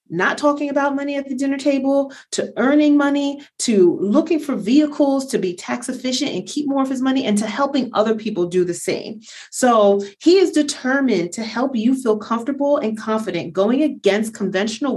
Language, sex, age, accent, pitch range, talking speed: English, female, 30-49, American, 195-280 Hz, 190 wpm